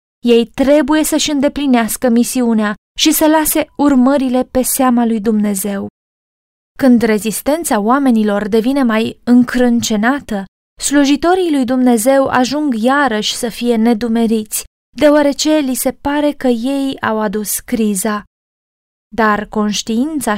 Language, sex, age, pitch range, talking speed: Romanian, female, 20-39, 225-270 Hz, 110 wpm